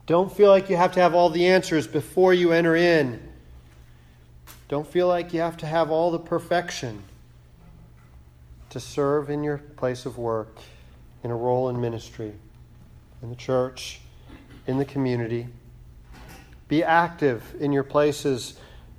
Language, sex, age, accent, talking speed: English, male, 40-59, American, 150 wpm